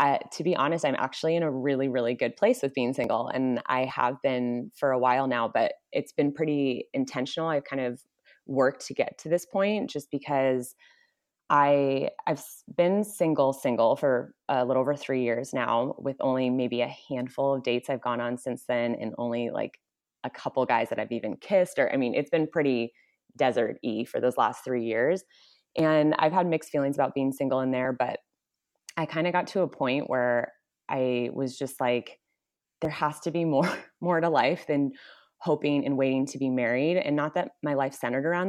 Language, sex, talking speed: English, female, 205 wpm